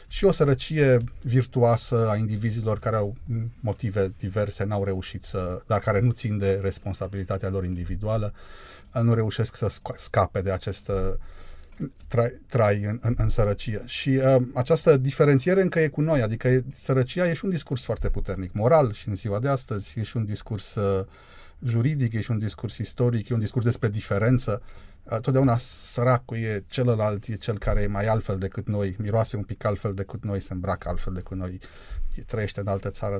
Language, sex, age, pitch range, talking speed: Romanian, male, 30-49, 100-125 Hz, 180 wpm